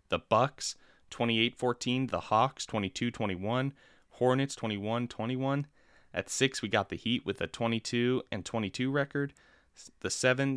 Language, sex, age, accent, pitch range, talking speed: English, male, 20-39, American, 95-125 Hz, 120 wpm